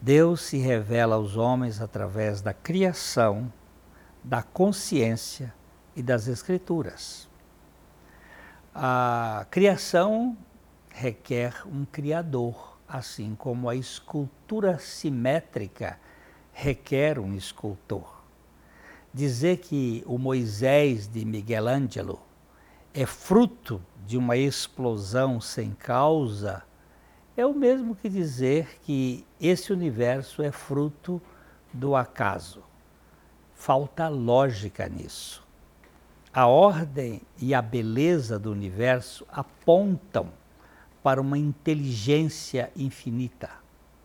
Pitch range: 100-150 Hz